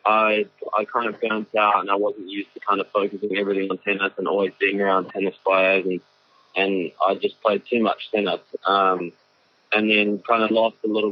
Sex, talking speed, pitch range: male, 210 wpm, 100-115 Hz